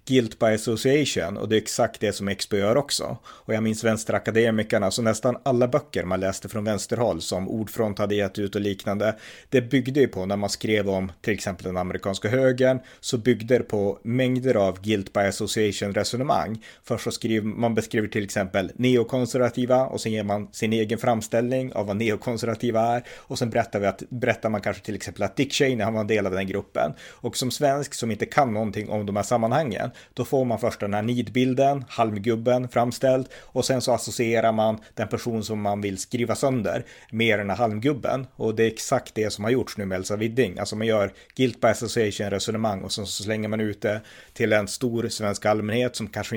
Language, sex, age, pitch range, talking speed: Swedish, male, 30-49, 100-120 Hz, 210 wpm